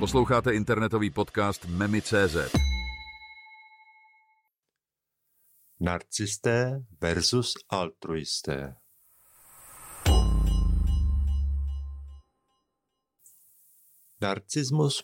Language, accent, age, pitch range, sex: Czech, native, 50-69, 95-120 Hz, male